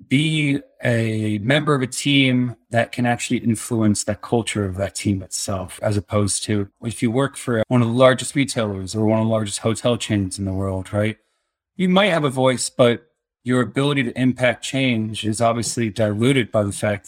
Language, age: English, 30-49